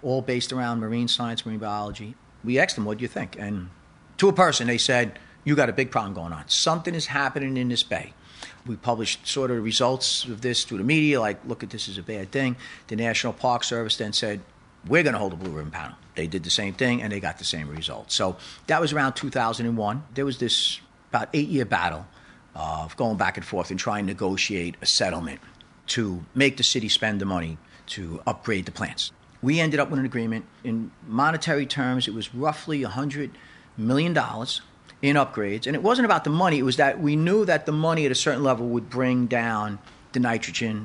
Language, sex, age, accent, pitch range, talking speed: English, male, 50-69, American, 105-140 Hz, 220 wpm